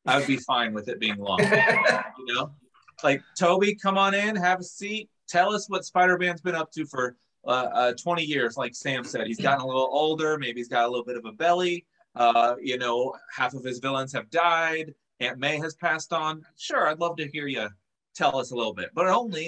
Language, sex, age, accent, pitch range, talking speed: English, male, 30-49, American, 120-165 Hz, 230 wpm